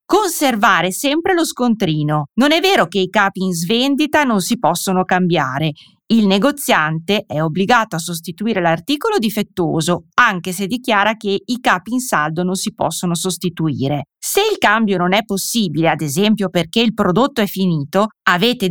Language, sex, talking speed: Italian, female, 160 wpm